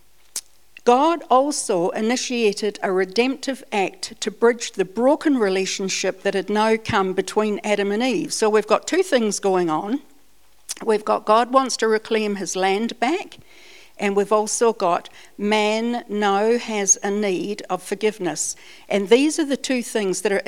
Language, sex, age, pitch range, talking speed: English, female, 60-79, 195-235 Hz, 160 wpm